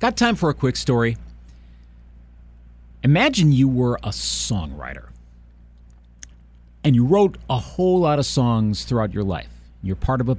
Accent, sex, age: American, male, 40-59